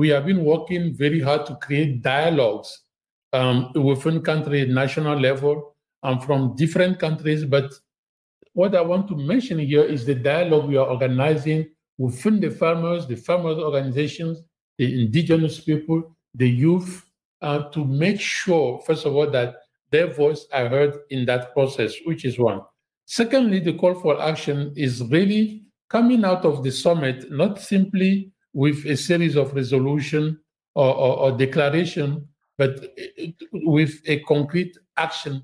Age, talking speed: 50-69, 150 wpm